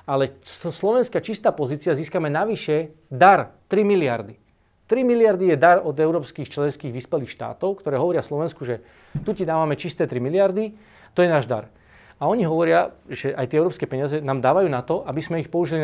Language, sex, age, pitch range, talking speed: Slovak, male, 40-59, 135-175 Hz, 180 wpm